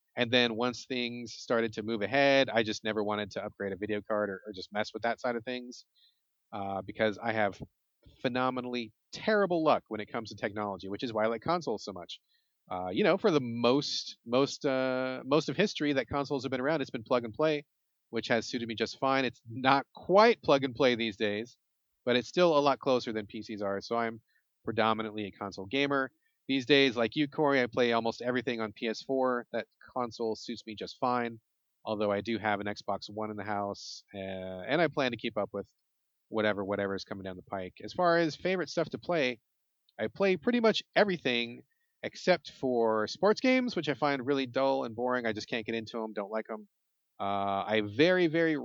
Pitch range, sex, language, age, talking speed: 110-145 Hz, male, English, 30-49, 215 wpm